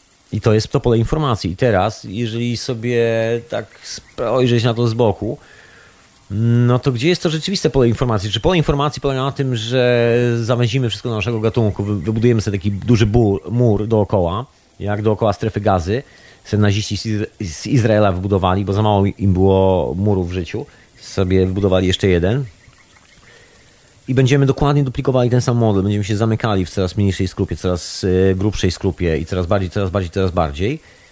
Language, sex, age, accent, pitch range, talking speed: Polish, male, 30-49, native, 95-120 Hz, 170 wpm